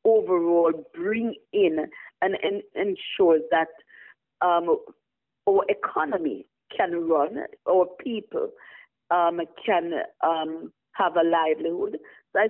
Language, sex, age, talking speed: English, female, 40-59, 110 wpm